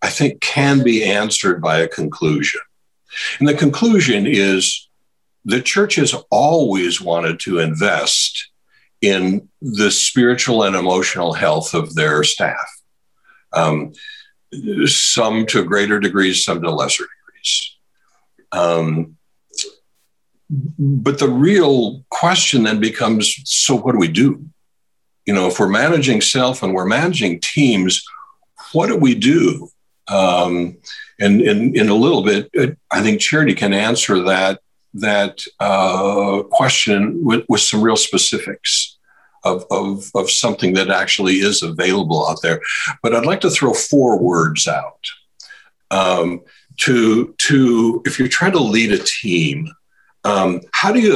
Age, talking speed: 60-79, 135 wpm